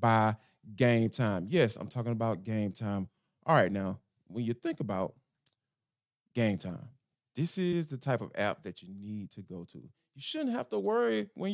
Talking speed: 185 wpm